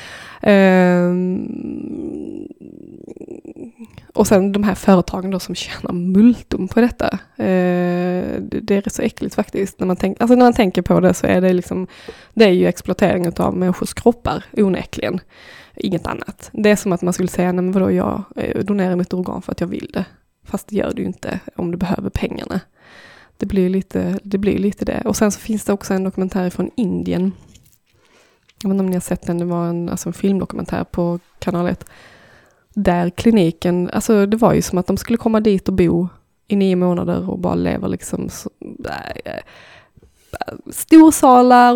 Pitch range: 180-230 Hz